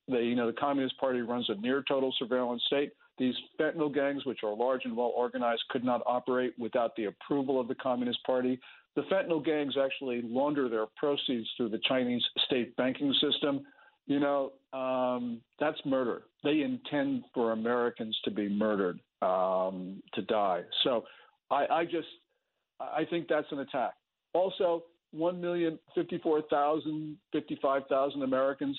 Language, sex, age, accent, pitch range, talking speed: English, male, 50-69, American, 120-145 Hz, 150 wpm